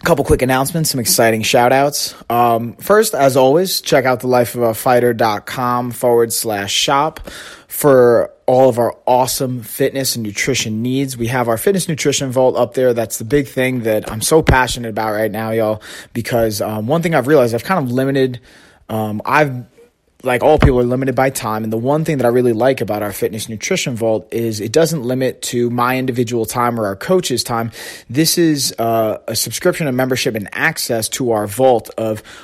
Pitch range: 115-135 Hz